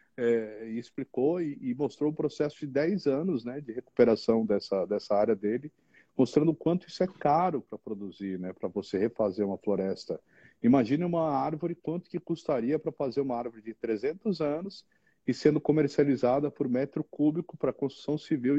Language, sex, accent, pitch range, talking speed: Portuguese, male, Brazilian, 120-160 Hz, 180 wpm